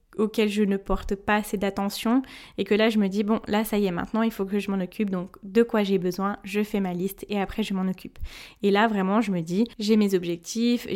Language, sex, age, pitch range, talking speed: French, female, 10-29, 195-225 Hz, 265 wpm